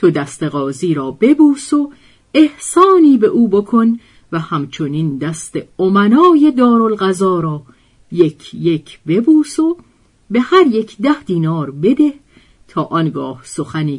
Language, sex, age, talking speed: Persian, female, 50-69, 125 wpm